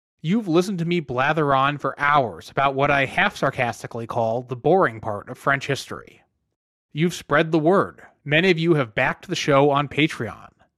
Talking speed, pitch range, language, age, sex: 185 wpm, 130-180 Hz, English, 20-39, male